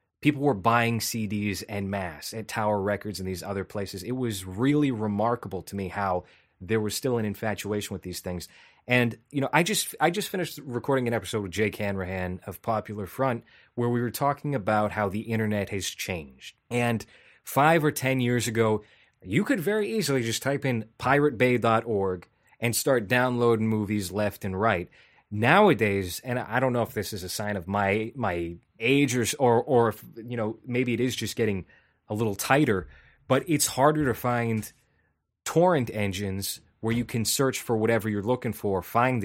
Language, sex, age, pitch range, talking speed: English, male, 20-39, 100-125 Hz, 185 wpm